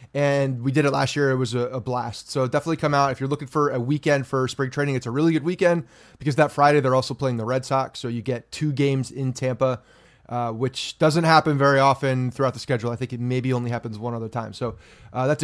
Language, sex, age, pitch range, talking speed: English, male, 30-49, 125-150 Hz, 255 wpm